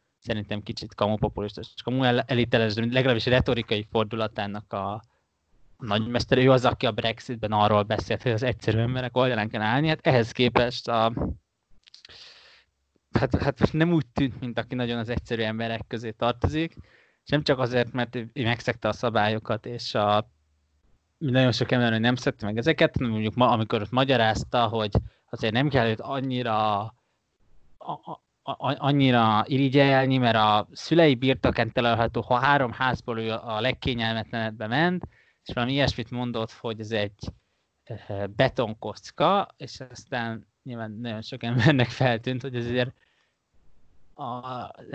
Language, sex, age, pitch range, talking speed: Hungarian, male, 20-39, 110-130 Hz, 140 wpm